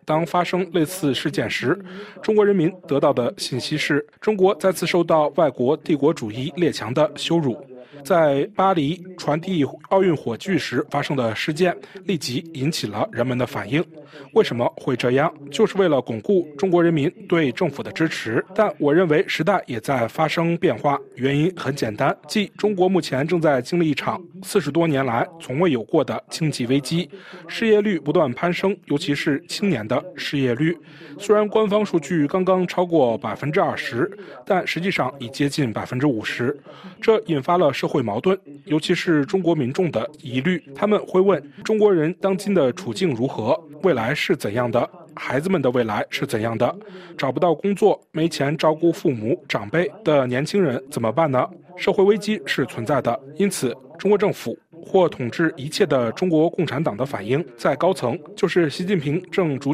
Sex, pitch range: male, 140-185 Hz